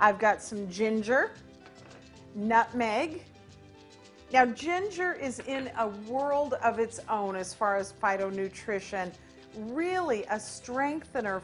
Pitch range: 200-260 Hz